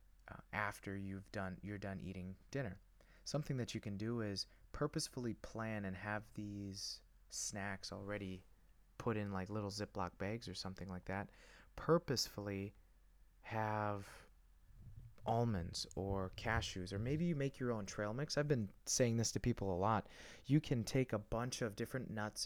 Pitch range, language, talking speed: 100-120 Hz, English, 160 wpm